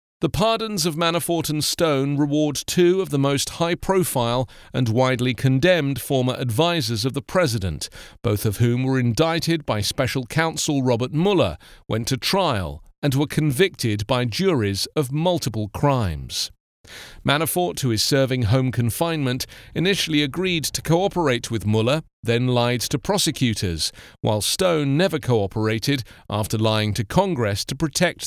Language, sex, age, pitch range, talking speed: English, male, 40-59, 115-160 Hz, 145 wpm